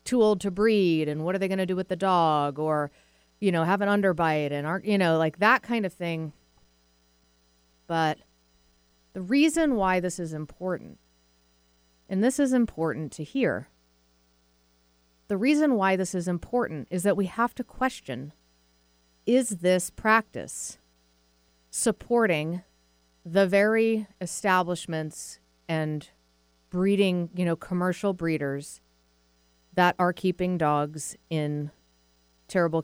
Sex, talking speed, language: female, 135 wpm, English